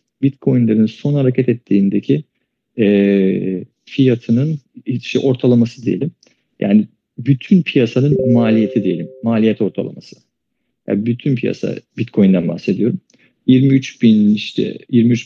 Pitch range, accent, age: 105-135 Hz, native, 40-59